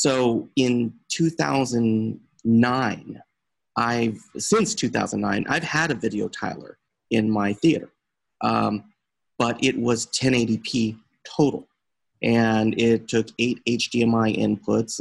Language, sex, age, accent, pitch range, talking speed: English, male, 30-49, American, 110-135 Hz, 105 wpm